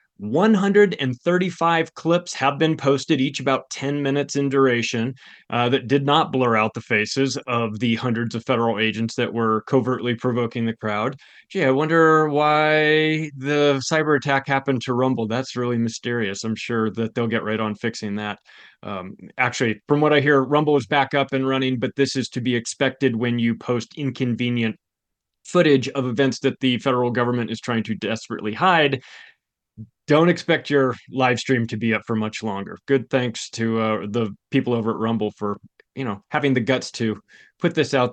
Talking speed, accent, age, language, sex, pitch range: 185 wpm, American, 30-49, English, male, 115-155 Hz